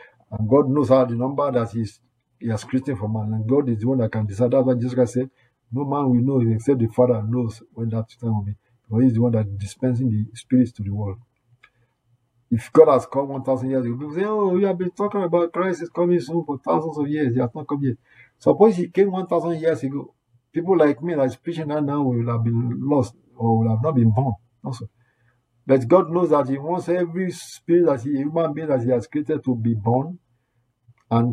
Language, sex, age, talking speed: English, male, 50-69, 230 wpm